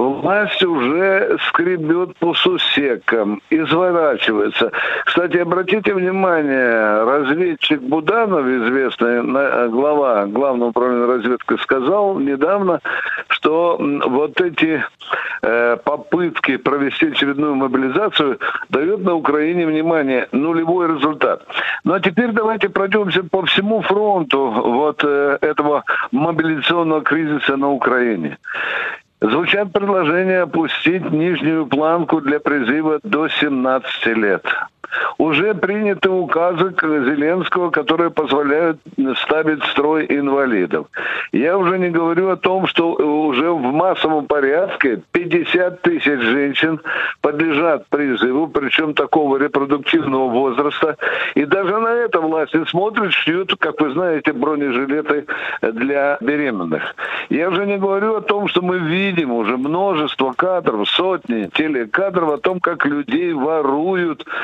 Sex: male